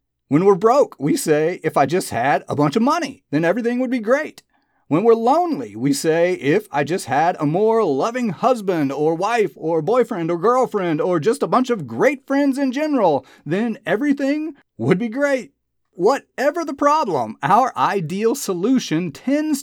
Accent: American